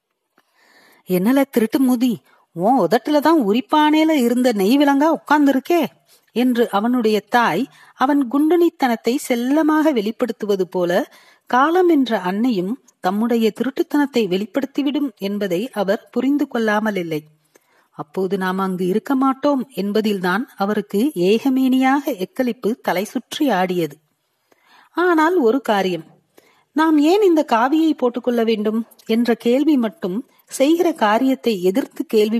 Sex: female